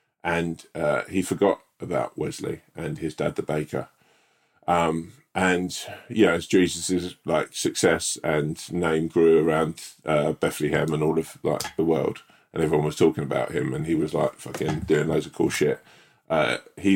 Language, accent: English, British